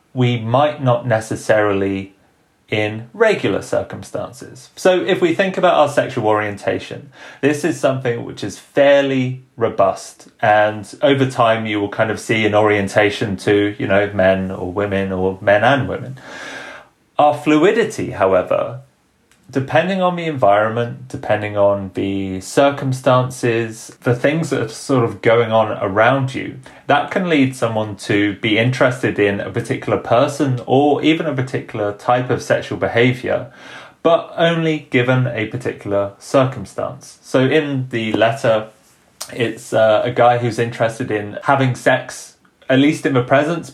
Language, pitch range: English, 105-135 Hz